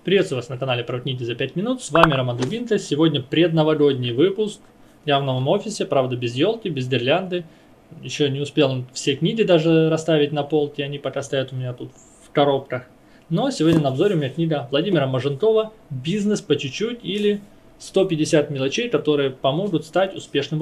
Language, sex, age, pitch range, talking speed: Russian, male, 20-39, 135-170 Hz, 180 wpm